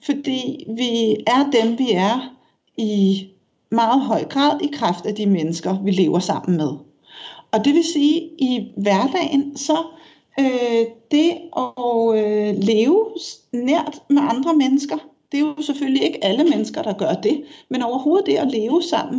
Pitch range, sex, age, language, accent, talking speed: 220-295 Hz, female, 60-79, Danish, native, 160 wpm